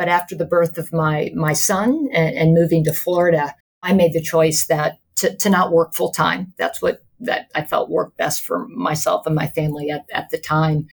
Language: English